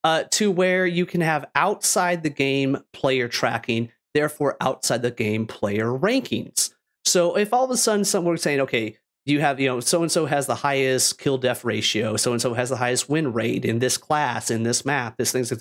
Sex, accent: male, American